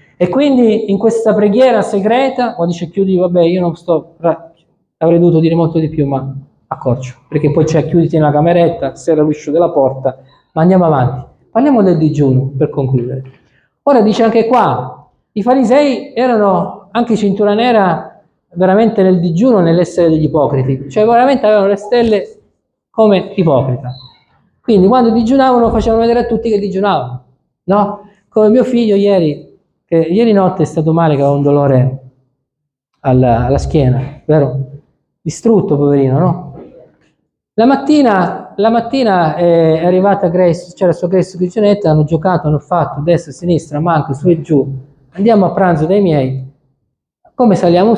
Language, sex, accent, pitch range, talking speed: Italian, male, native, 150-210 Hz, 155 wpm